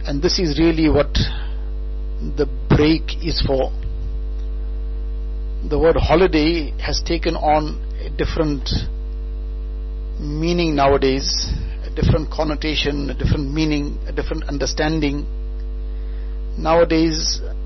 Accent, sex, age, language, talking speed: Indian, male, 50-69, English, 100 wpm